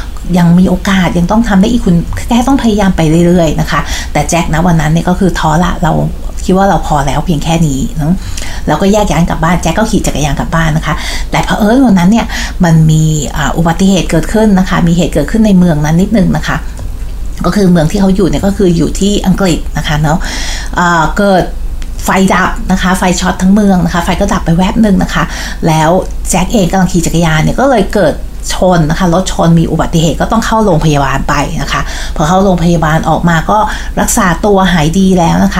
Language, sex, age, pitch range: Thai, female, 60-79, 165-210 Hz